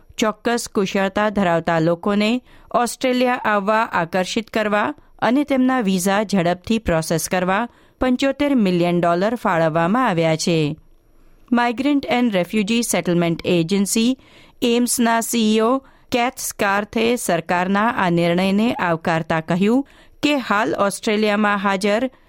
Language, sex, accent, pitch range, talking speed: Gujarati, female, native, 175-230 Hz, 90 wpm